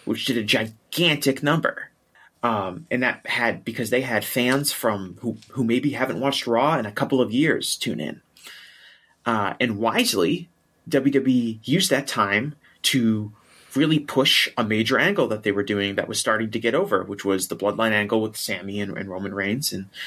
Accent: American